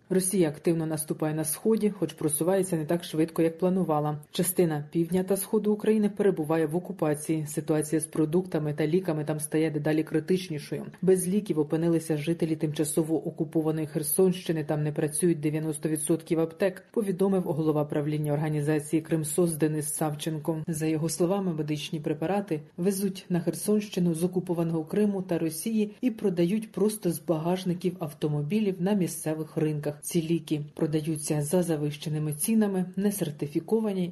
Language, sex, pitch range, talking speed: Ukrainian, female, 155-185 Hz, 135 wpm